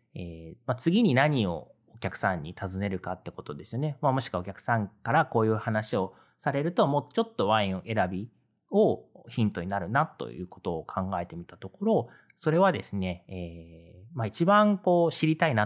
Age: 40-59